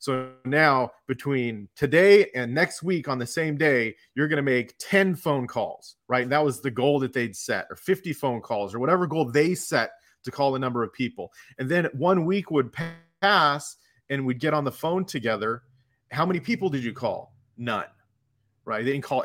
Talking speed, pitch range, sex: 205 wpm, 125-155 Hz, male